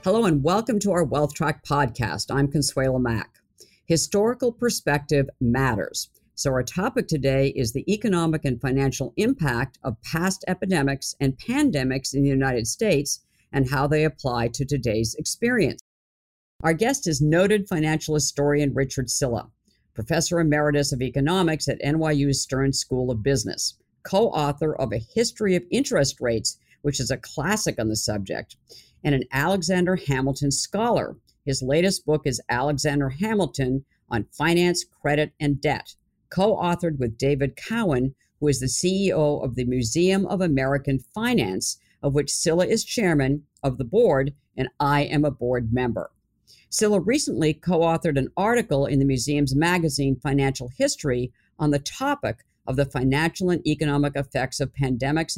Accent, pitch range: American, 135-165 Hz